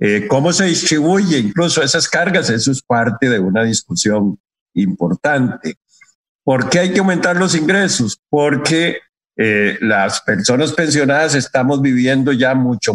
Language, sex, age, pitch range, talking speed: Spanish, male, 50-69, 115-160 Hz, 140 wpm